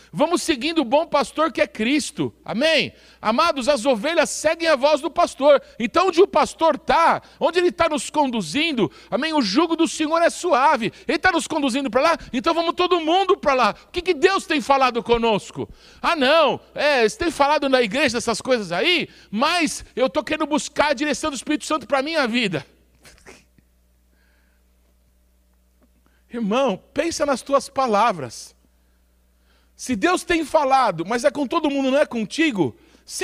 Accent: Brazilian